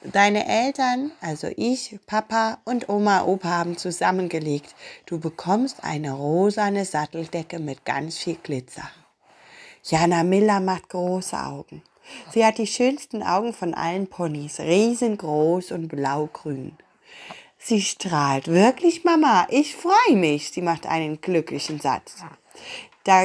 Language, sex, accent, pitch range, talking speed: German, female, German, 165-220 Hz, 125 wpm